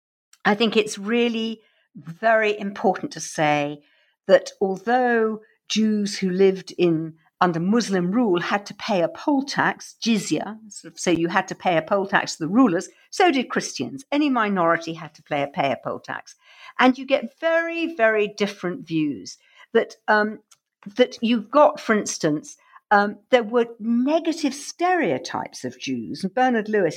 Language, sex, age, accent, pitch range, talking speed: English, female, 50-69, British, 180-260 Hz, 165 wpm